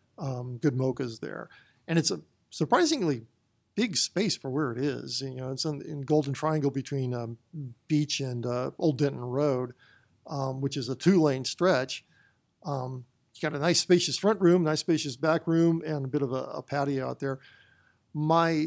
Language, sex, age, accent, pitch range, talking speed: English, male, 50-69, American, 130-160 Hz, 180 wpm